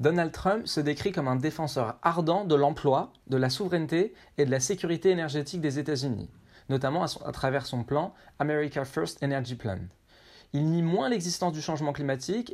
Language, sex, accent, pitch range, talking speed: French, male, French, 130-175 Hz, 175 wpm